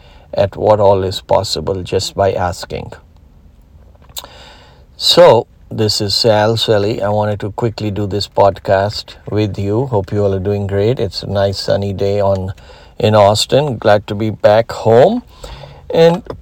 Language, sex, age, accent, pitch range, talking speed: English, male, 60-79, Indian, 95-115 Hz, 155 wpm